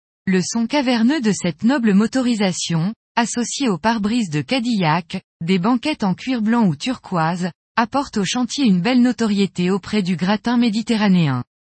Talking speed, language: 155 wpm, French